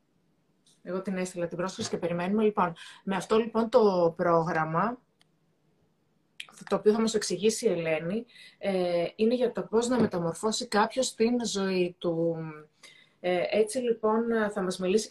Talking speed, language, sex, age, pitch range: 140 wpm, Greek, female, 30-49, 170-220 Hz